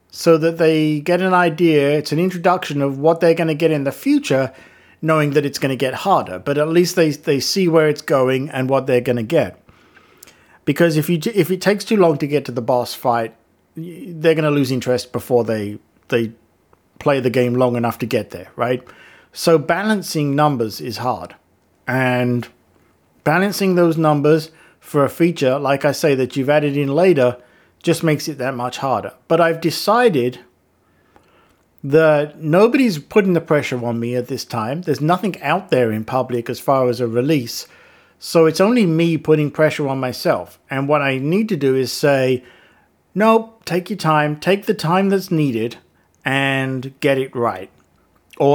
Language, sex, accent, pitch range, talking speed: English, male, British, 125-165 Hz, 185 wpm